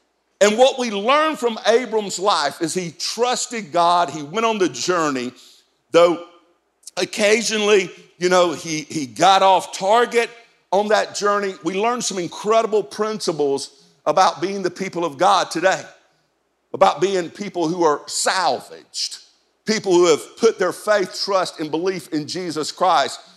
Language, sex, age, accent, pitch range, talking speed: English, male, 50-69, American, 170-235 Hz, 150 wpm